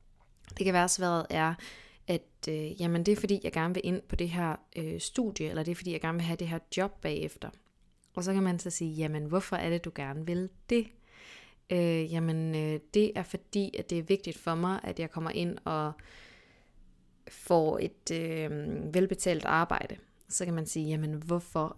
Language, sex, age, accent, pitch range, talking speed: English, female, 20-39, Danish, 160-185 Hz, 185 wpm